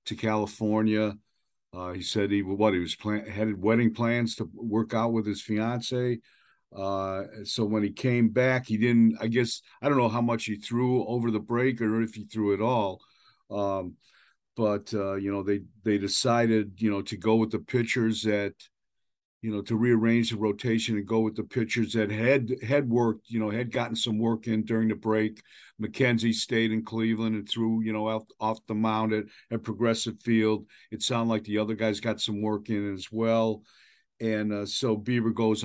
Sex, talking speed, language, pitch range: male, 200 wpm, English, 105-120 Hz